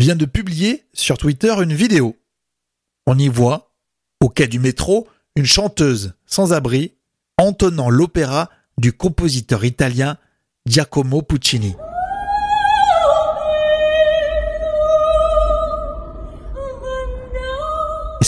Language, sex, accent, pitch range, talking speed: French, male, French, 130-185 Hz, 85 wpm